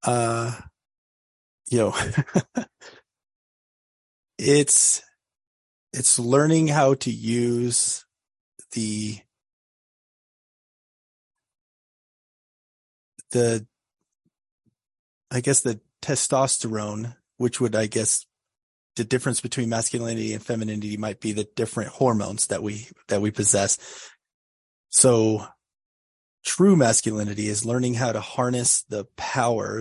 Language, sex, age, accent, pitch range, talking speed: English, male, 30-49, American, 105-120 Hz, 90 wpm